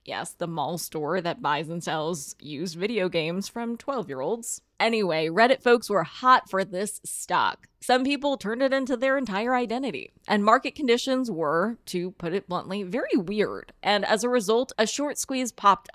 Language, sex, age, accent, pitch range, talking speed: English, female, 20-39, American, 185-250 Hz, 175 wpm